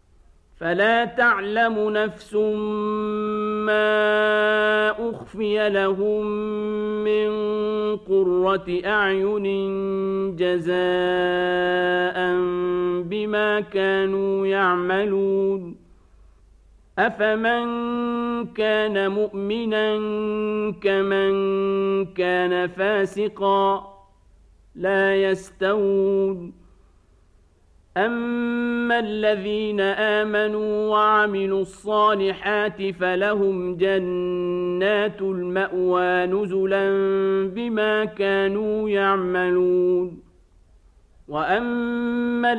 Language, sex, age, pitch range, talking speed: Arabic, male, 50-69, 180-215 Hz, 50 wpm